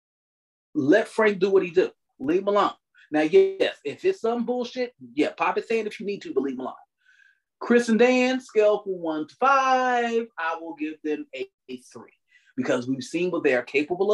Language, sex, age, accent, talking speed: English, male, 30-49, American, 205 wpm